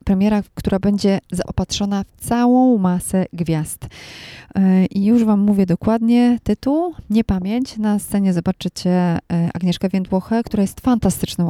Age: 20-39